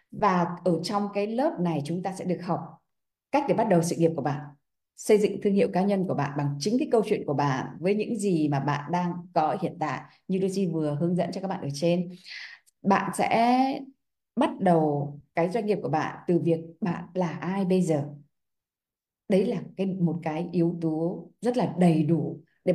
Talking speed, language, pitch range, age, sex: 215 wpm, Vietnamese, 160-205 Hz, 20-39, female